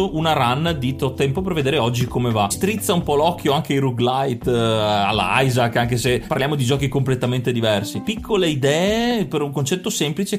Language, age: Italian, 30-49